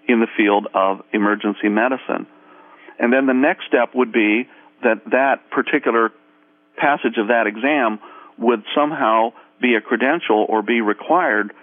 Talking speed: 145 wpm